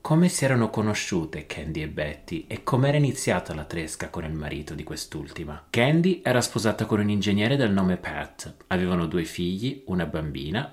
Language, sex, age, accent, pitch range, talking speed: Italian, male, 30-49, native, 95-125 Hz, 175 wpm